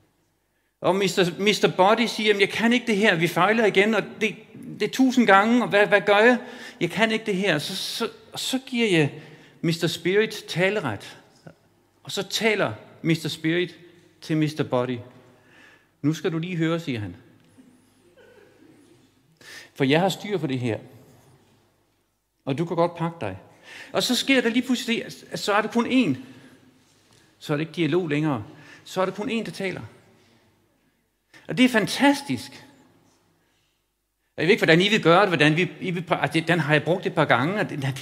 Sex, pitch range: male, 135-210 Hz